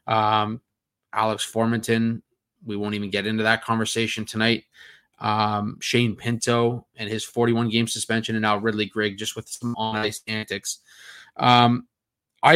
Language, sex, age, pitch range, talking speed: English, male, 20-39, 110-125 Hz, 145 wpm